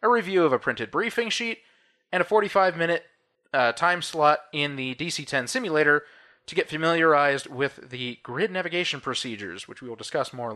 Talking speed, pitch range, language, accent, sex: 165 wpm, 125-195 Hz, English, American, male